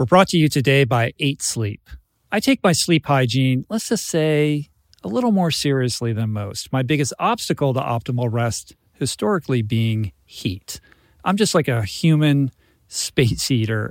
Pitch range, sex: 115-150 Hz, male